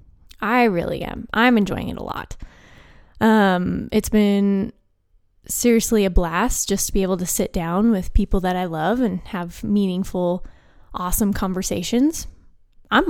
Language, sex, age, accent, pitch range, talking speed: English, female, 10-29, American, 180-235 Hz, 145 wpm